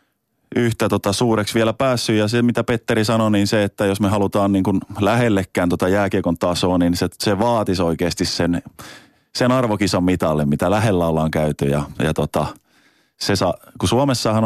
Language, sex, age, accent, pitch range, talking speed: Finnish, male, 30-49, native, 90-110 Hz, 175 wpm